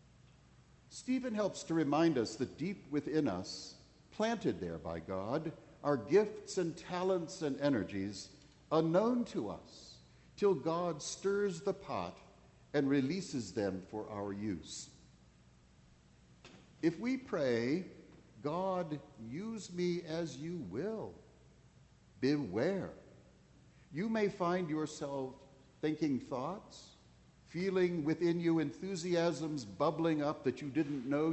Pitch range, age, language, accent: 105-175 Hz, 60-79, English, American